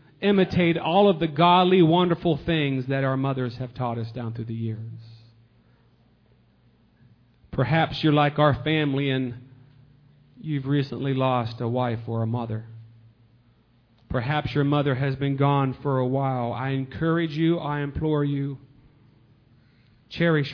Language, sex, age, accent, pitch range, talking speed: English, male, 40-59, American, 125-160 Hz, 135 wpm